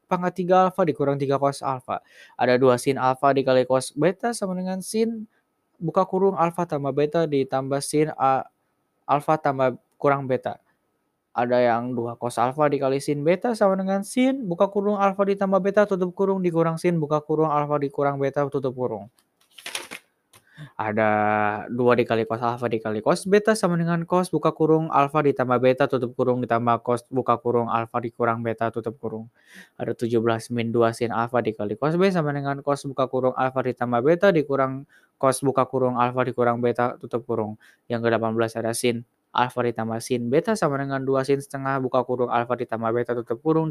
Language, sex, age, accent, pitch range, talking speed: Indonesian, male, 10-29, native, 120-160 Hz, 180 wpm